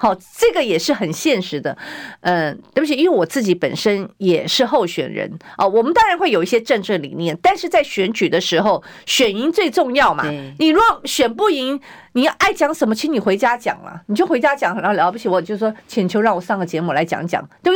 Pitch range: 180-300 Hz